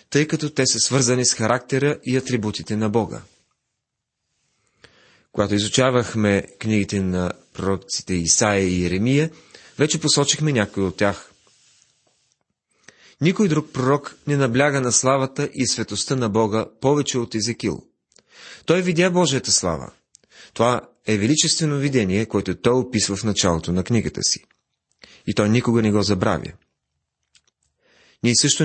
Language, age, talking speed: Bulgarian, 30-49, 130 wpm